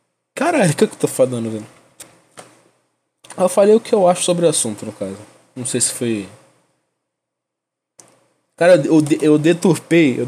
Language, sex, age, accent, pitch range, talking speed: Portuguese, male, 20-39, Brazilian, 115-160 Hz, 170 wpm